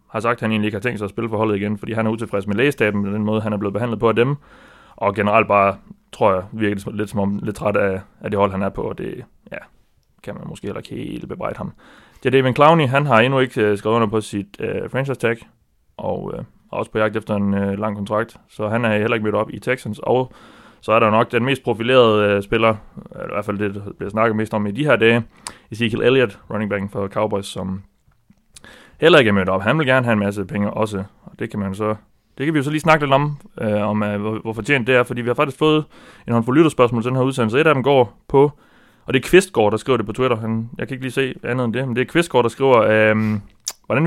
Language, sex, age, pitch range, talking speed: Danish, male, 30-49, 105-125 Hz, 275 wpm